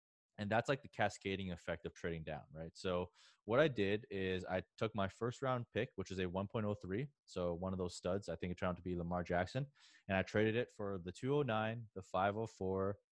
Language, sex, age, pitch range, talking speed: English, male, 20-39, 95-120 Hz, 220 wpm